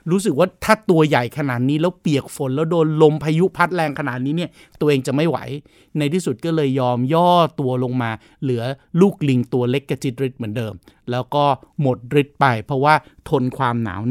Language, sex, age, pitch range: Thai, male, 60-79, 130-175 Hz